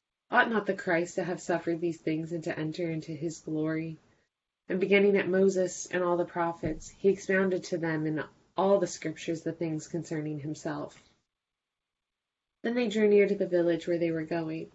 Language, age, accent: English, 20-39, American